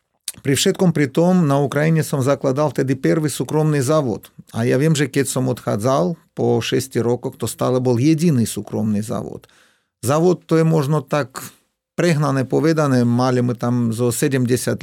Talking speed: 160 wpm